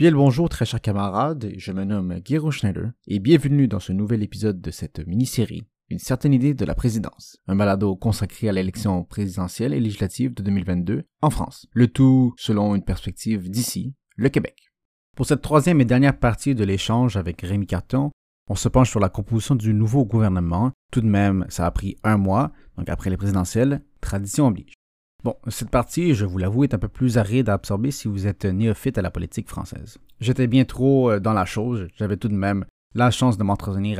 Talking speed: 205 wpm